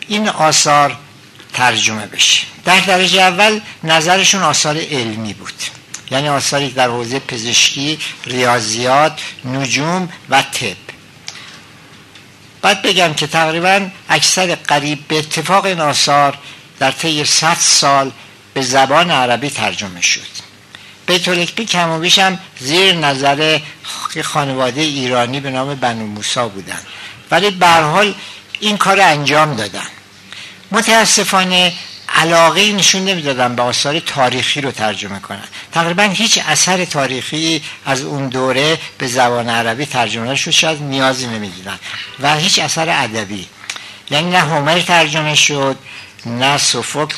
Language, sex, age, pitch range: Persian, male, 60-79, 125-170 Hz